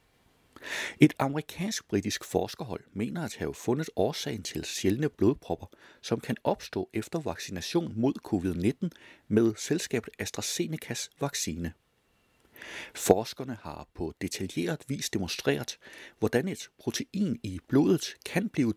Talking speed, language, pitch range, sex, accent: 110 wpm, Danish, 105-165 Hz, male, native